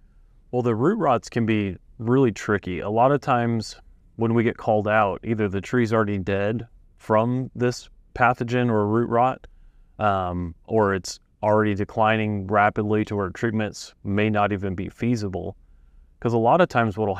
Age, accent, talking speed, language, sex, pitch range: 30-49, American, 170 wpm, English, male, 95-115 Hz